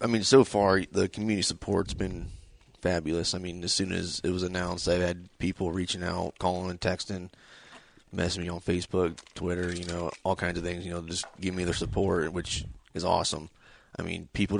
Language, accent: English, American